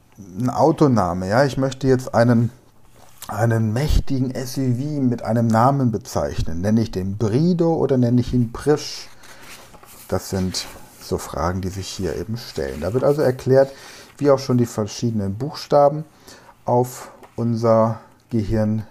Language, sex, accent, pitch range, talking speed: German, male, German, 105-125 Hz, 145 wpm